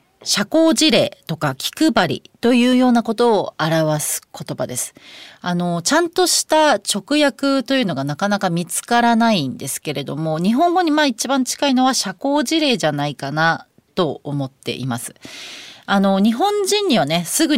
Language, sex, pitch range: Japanese, female, 155-260 Hz